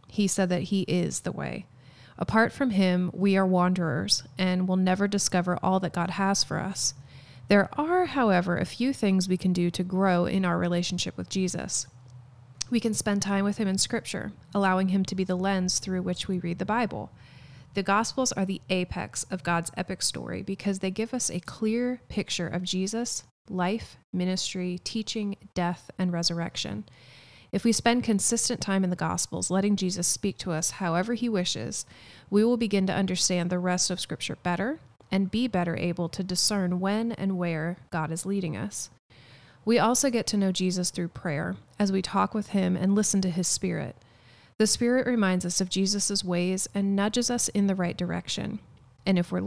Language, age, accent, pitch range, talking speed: English, 30-49, American, 170-200 Hz, 190 wpm